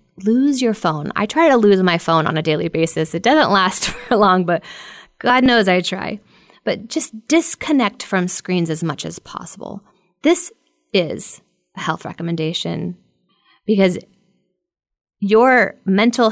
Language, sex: English, female